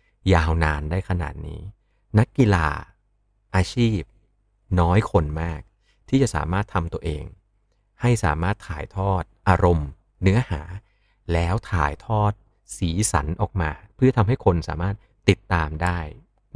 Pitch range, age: 85-105 Hz, 30-49